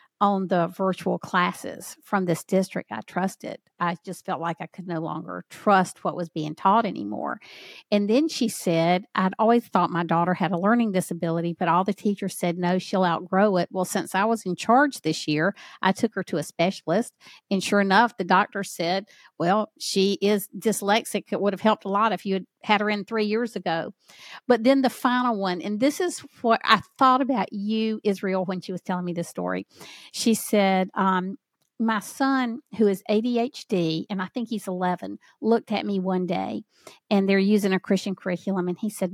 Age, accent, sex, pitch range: 50-69, American, female, 175-215 Hz